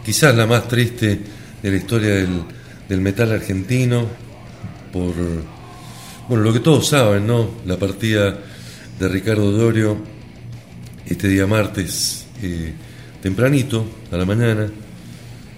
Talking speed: 120 wpm